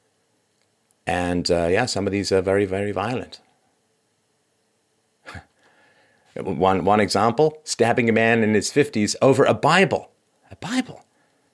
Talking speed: 125 wpm